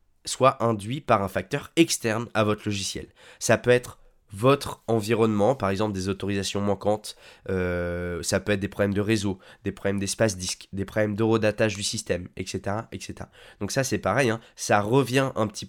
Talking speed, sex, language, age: 180 wpm, male, French, 20-39